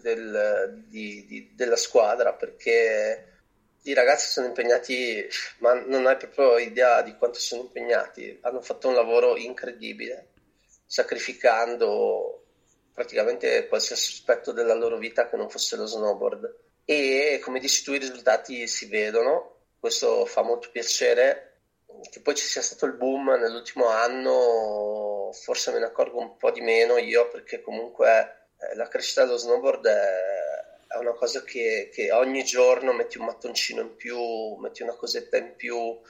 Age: 30-49